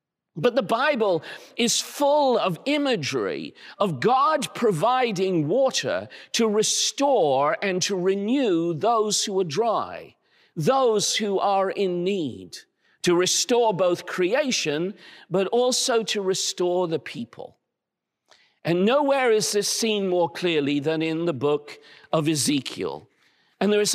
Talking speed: 130 wpm